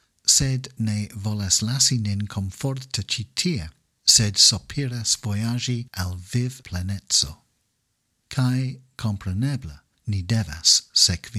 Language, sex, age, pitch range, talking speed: English, male, 50-69, 100-130 Hz, 95 wpm